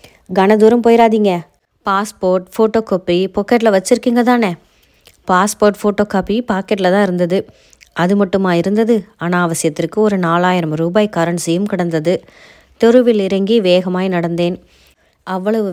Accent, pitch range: native, 180-210 Hz